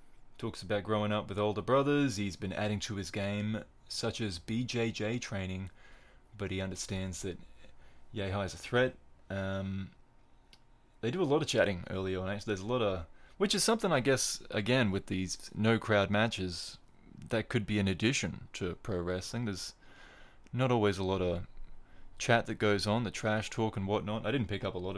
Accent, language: Australian, English